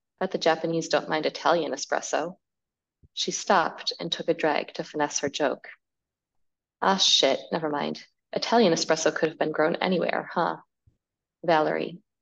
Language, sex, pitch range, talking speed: English, female, 165-215 Hz, 150 wpm